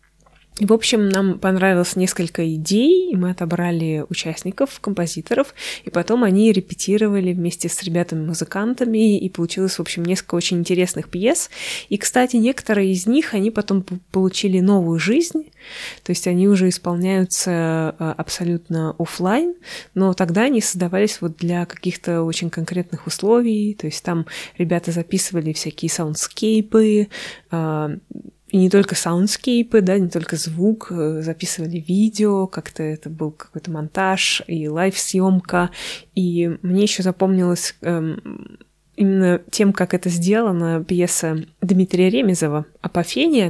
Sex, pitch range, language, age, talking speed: female, 170-205 Hz, Russian, 20-39, 125 wpm